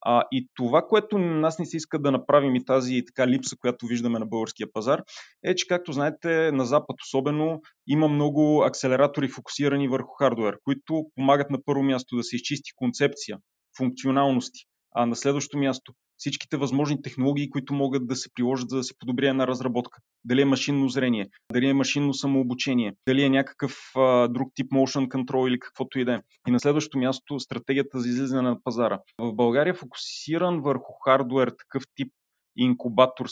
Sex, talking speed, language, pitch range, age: male, 175 wpm, Bulgarian, 125-145 Hz, 30-49